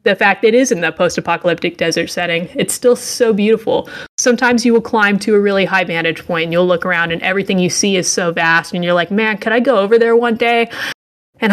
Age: 20-39